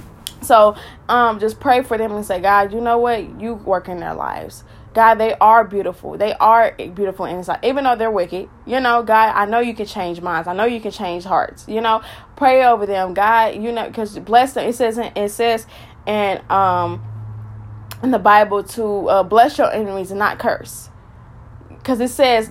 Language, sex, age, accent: English, female, 20-39, American